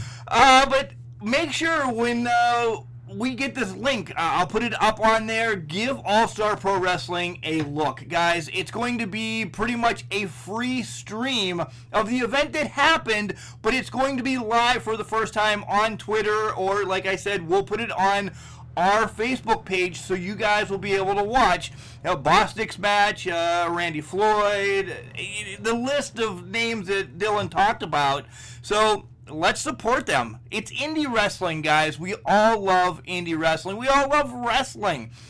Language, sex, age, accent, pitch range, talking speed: English, male, 30-49, American, 165-225 Hz, 175 wpm